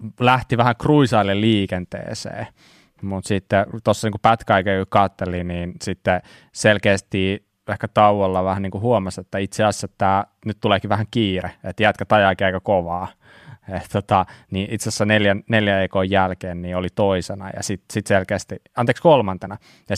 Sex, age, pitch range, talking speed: male, 20-39, 95-110 Hz, 150 wpm